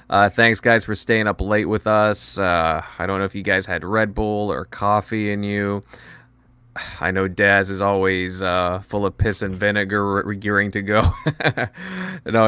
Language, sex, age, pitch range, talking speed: English, male, 20-39, 100-120 Hz, 185 wpm